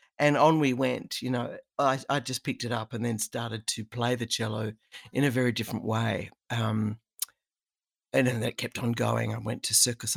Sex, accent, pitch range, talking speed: female, Australian, 125-155 Hz, 205 wpm